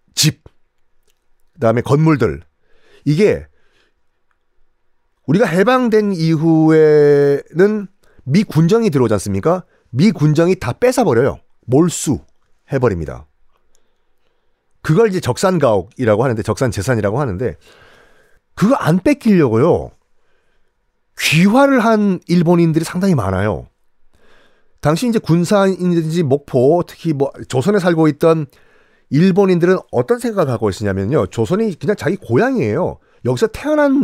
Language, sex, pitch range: Korean, male, 150-230 Hz